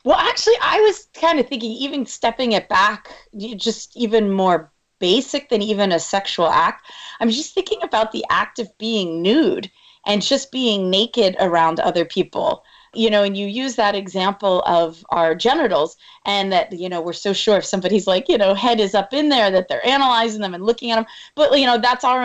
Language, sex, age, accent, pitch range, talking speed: English, female, 30-49, American, 190-240 Hz, 205 wpm